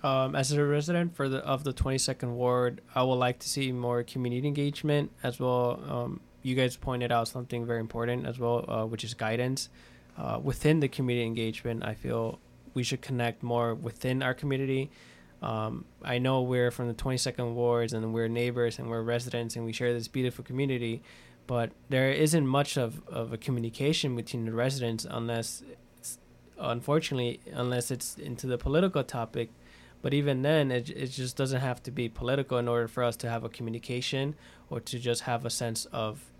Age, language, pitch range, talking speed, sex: 20-39, English, 115-130 Hz, 185 wpm, male